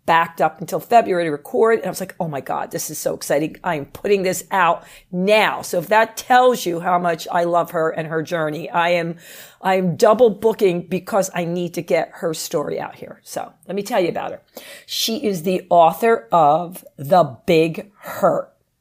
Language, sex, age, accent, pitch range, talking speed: English, female, 40-59, American, 170-215 Hz, 205 wpm